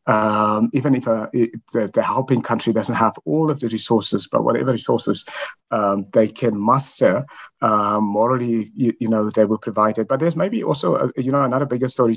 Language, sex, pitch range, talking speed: English, male, 115-140 Hz, 200 wpm